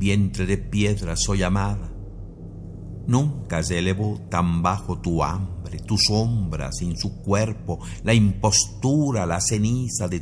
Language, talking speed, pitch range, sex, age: Spanish, 130 wpm, 90-110 Hz, male, 50-69